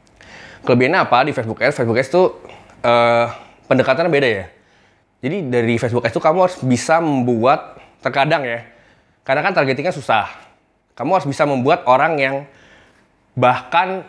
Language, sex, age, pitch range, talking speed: Indonesian, male, 20-39, 105-135 Hz, 145 wpm